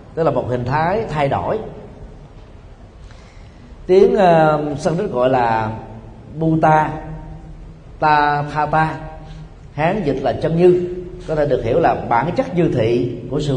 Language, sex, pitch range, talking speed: Vietnamese, male, 120-170 Hz, 135 wpm